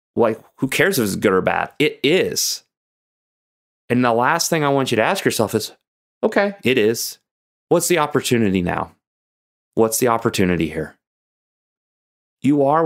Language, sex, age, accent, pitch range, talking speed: English, male, 30-49, American, 95-135 Hz, 160 wpm